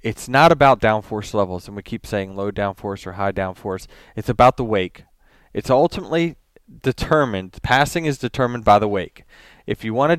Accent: American